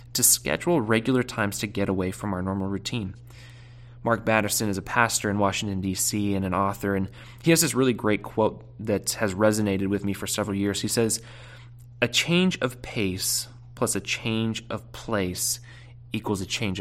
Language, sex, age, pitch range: English, male, 20-39, 100-120 Hz